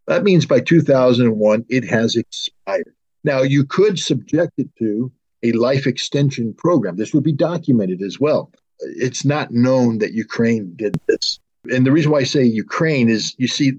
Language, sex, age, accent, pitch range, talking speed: English, male, 50-69, American, 120-145 Hz, 175 wpm